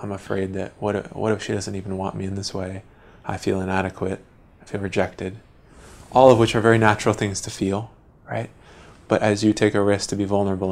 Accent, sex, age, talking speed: American, male, 20-39, 220 wpm